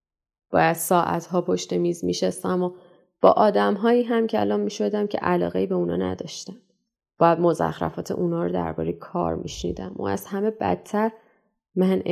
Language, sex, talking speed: Persian, female, 165 wpm